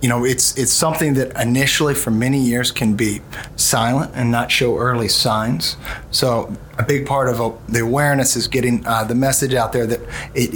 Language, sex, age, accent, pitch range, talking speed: English, male, 30-49, American, 110-130 Hz, 200 wpm